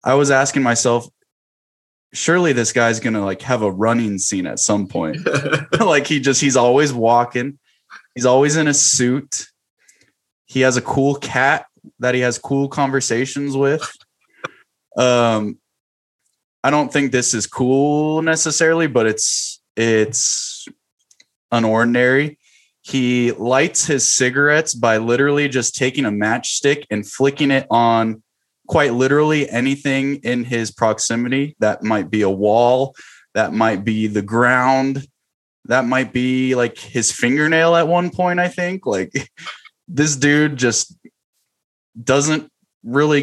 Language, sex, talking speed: English, male, 135 wpm